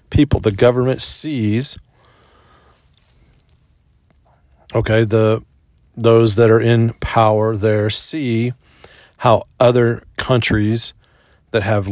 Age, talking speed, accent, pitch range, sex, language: 40-59, 90 wpm, American, 105-120 Hz, male, English